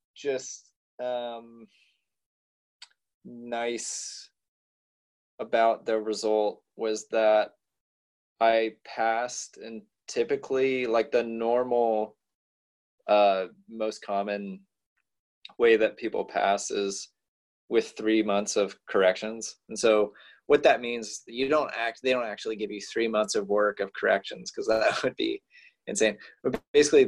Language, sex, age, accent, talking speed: English, male, 20-39, American, 120 wpm